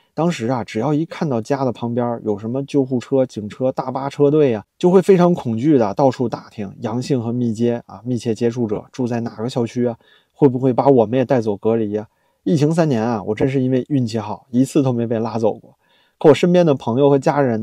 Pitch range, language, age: 110-135 Hz, Chinese, 20-39